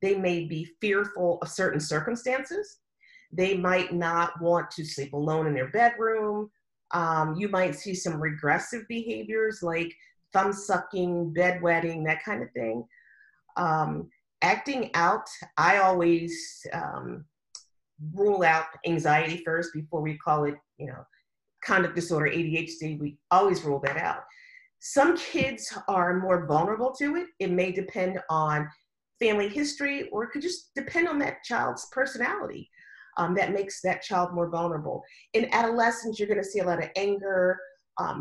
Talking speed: 150 wpm